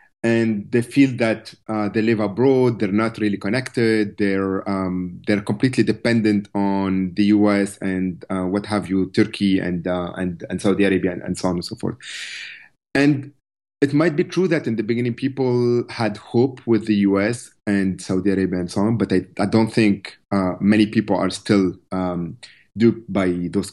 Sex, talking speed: male, 185 wpm